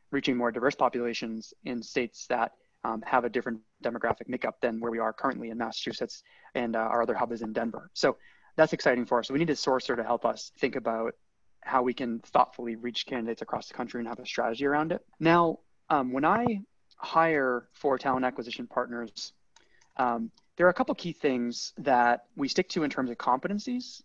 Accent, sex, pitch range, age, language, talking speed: American, male, 120-145 Hz, 20-39, English, 205 wpm